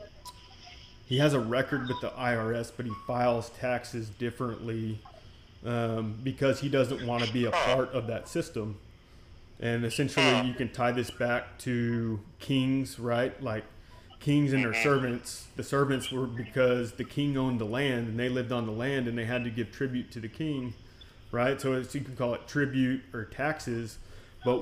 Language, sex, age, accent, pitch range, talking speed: English, male, 30-49, American, 115-130 Hz, 180 wpm